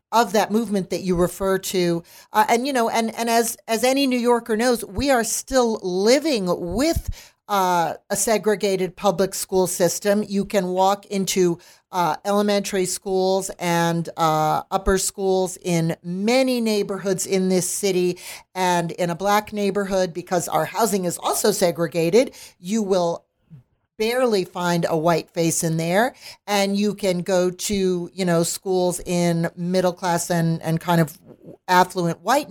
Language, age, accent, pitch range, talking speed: English, 40-59, American, 175-205 Hz, 155 wpm